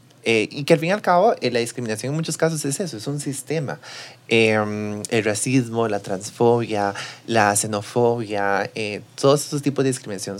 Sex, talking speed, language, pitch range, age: male, 185 wpm, Spanish, 105-135 Hz, 30-49